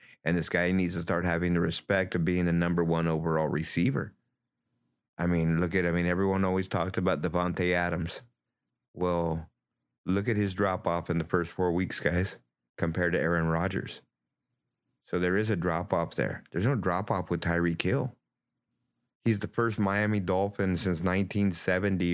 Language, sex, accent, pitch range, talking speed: English, male, American, 85-95 Hz, 170 wpm